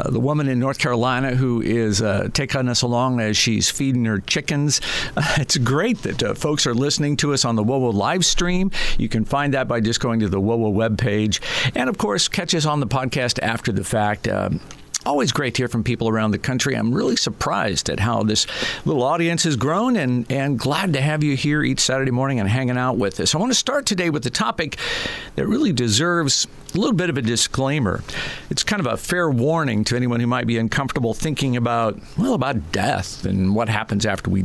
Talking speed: 220 wpm